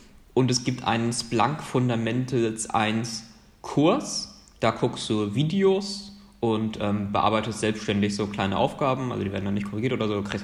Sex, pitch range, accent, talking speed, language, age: male, 110-140 Hz, German, 165 wpm, German, 20-39